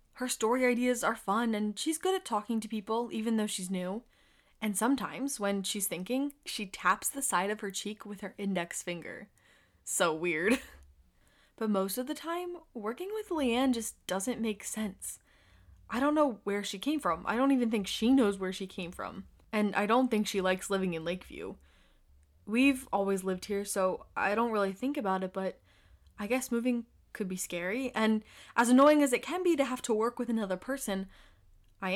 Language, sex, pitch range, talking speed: English, female, 195-255 Hz, 195 wpm